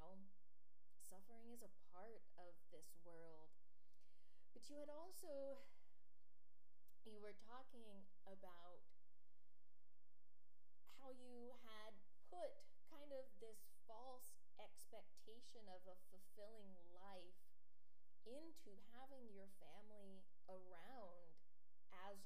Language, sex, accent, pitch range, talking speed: English, female, American, 160-240 Hz, 90 wpm